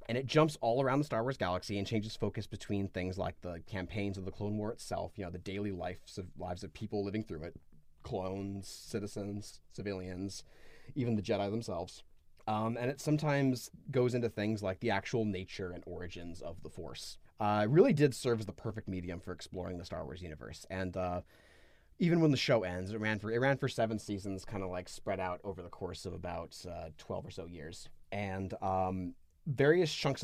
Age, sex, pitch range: 30-49, male, 90-115 Hz